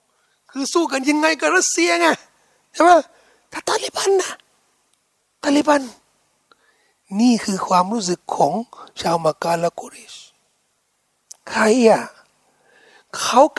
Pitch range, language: 220-315 Hz, Thai